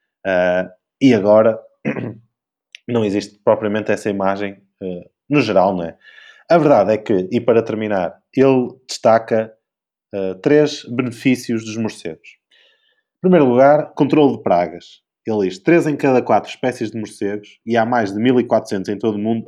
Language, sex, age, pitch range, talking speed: Portuguese, male, 20-39, 105-125 Hz, 150 wpm